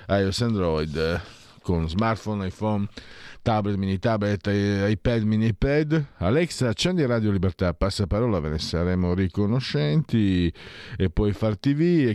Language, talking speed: Italian, 130 wpm